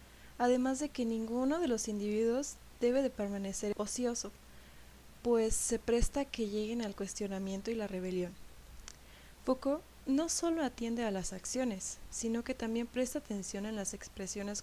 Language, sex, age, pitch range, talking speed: Spanish, female, 20-39, 190-235 Hz, 150 wpm